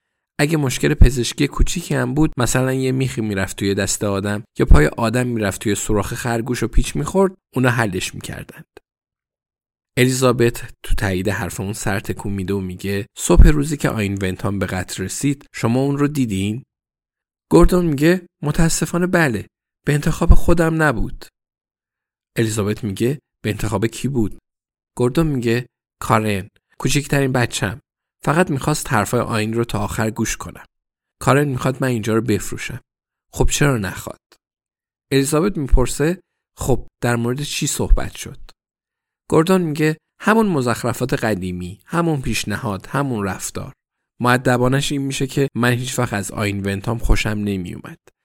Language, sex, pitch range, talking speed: Persian, male, 105-145 Hz, 140 wpm